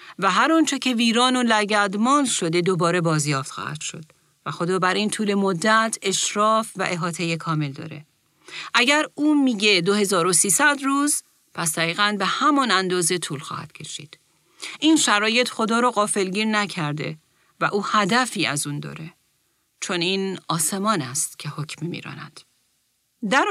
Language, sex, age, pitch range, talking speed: Persian, female, 40-59, 170-220 Hz, 150 wpm